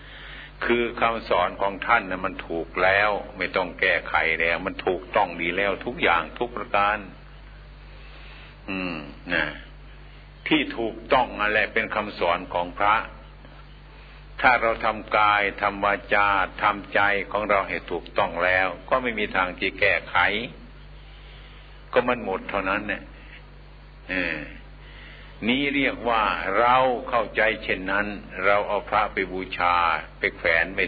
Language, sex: Thai, male